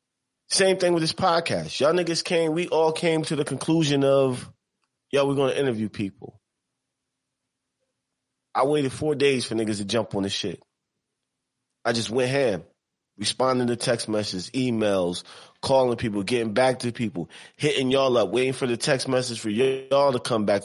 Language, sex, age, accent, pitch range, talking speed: English, male, 30-49, American, 115-140 Hz, 170 wpm